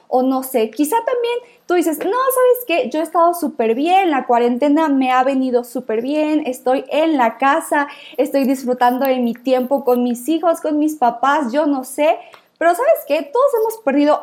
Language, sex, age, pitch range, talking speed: Spanish, female, 20-39, 255-335 Hz, 195 wpm